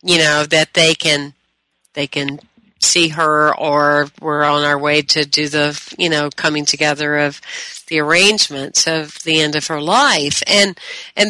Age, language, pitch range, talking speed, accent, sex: 50-69, English, 160-195 Hz, 170 wpm, American, female